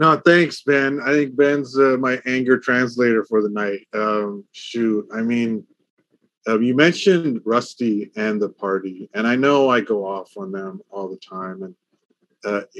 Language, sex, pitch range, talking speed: English, male, 110-145 Hz, 175 wpm